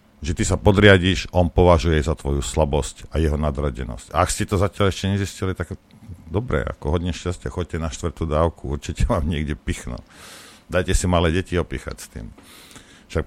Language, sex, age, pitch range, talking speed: Slovak, male, 50-69, 80-95 Hz, 180 wpm